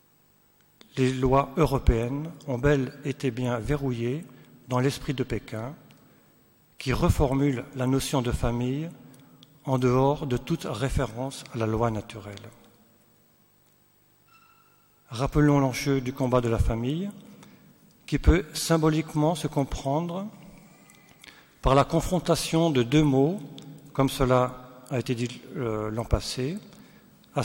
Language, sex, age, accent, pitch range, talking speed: French, male, 50-69, French, 125-150 Hz, 115 wpm